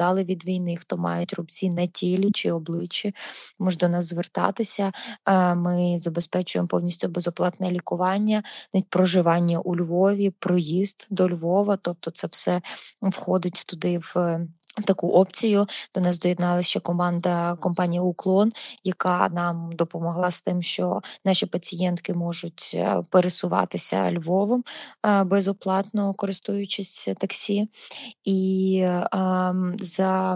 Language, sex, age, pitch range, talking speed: Ukrainian, female, 20-39, 180-195 Hz, 115 wpm